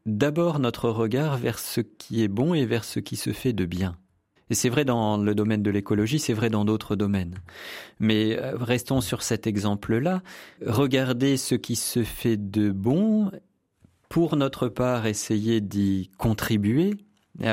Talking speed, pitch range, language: 165 wpm, 105-125 Hz, French